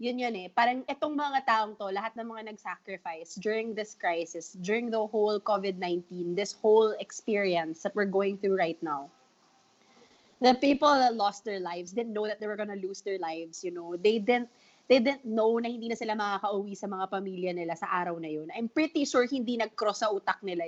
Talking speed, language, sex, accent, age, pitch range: 205 wpm, Filipino, female, native, 20-39, 190-245 Hz